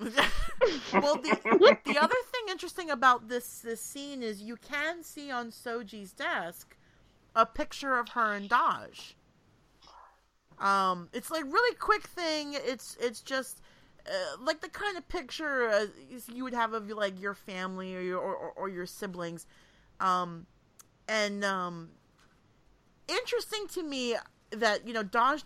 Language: English